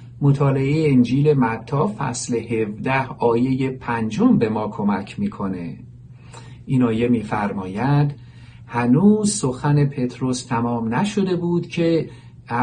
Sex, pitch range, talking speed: male, 120-155 Hz, 100 wpm